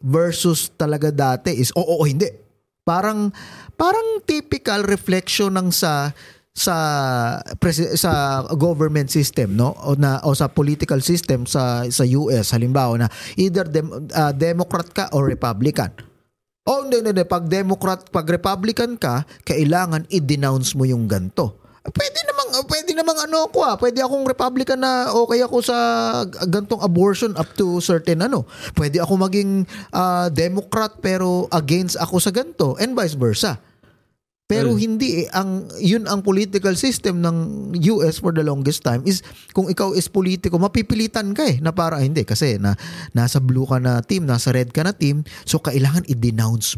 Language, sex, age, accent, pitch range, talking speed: Filipino, male, 20-39, native, 140-200 Hz, 160 wpm